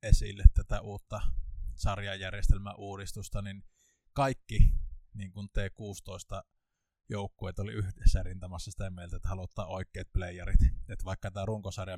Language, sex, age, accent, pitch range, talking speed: Finnish, male, 20-39, native, 90-105 Hz, 105 wpm